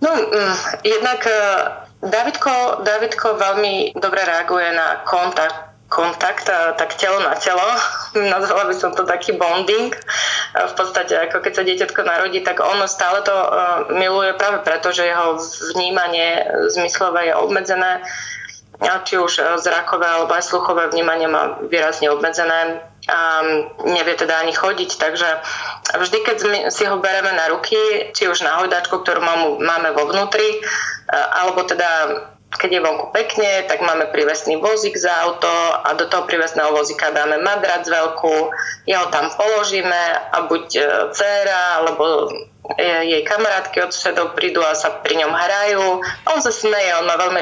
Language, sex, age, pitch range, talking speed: Slovak, female, 20-39, 165-205 Hz, 145 wpm